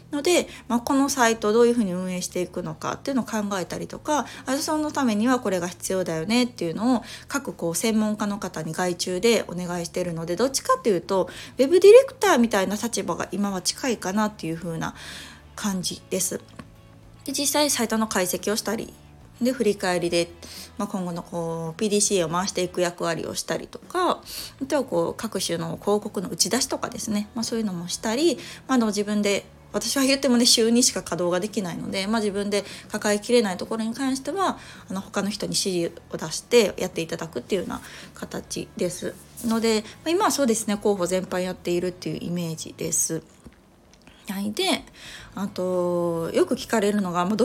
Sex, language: female, Japanese